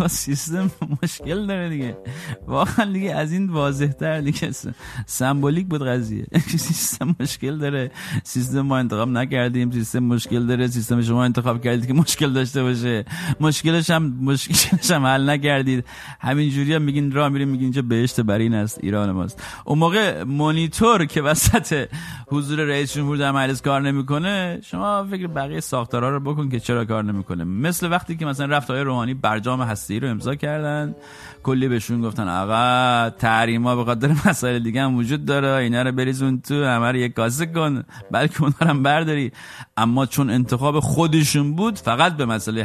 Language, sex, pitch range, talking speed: English, male, 120-155 Hz, 160 wpm